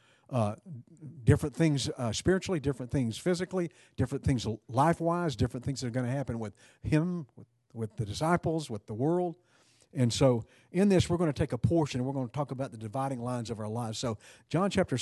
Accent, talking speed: American, 205 wpm